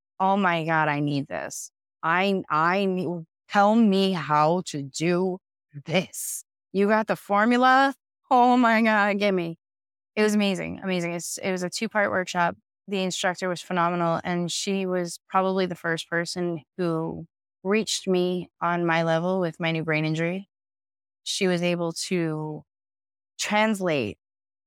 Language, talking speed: English, 150 wpm